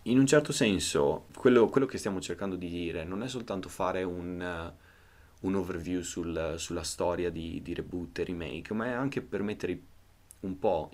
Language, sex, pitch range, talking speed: Italian, male, 85-95 Hz, 175 wpm